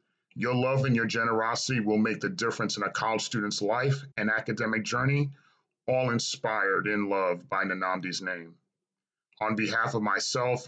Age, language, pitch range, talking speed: 40-59, English, 105-140 Hz, 155 wpm